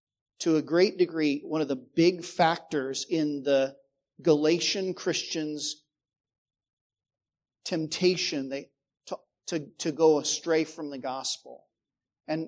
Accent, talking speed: American, 105 wpm